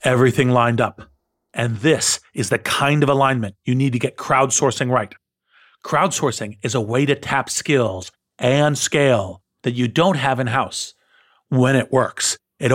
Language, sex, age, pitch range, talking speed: English, male, 40-59, 115-145 Hz, 160 wpm